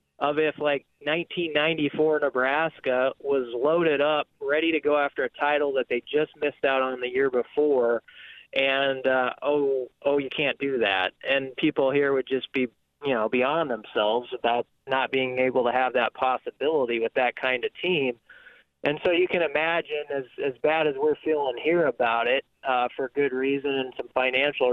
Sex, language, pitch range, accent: male, English, 130-170 Hz, American